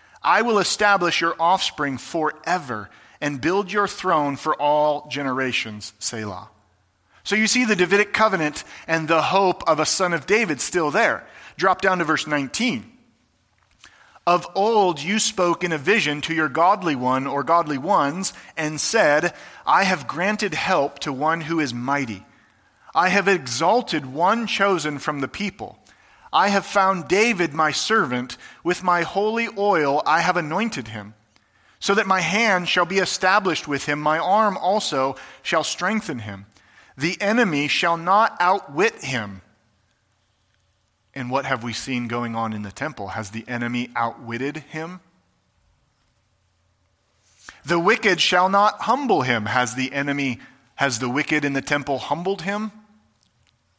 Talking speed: 150 wpm